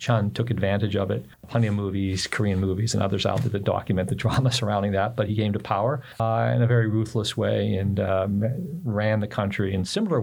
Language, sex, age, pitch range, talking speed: English, male, 50-69, 100-120 Hz, 225 wpm